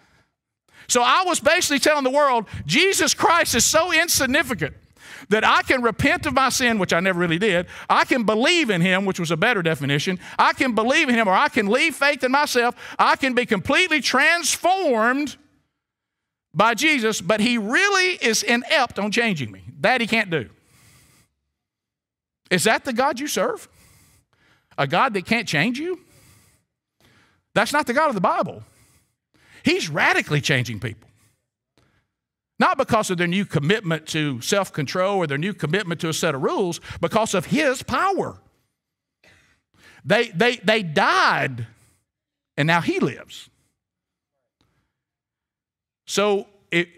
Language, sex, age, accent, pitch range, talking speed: English, male, 50-69, American, 165-260 Hz, 150 wpm